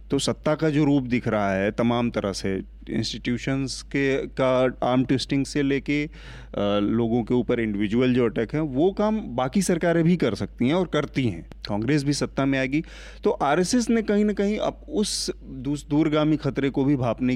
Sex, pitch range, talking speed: male, 120-150 Hz, 185 wpm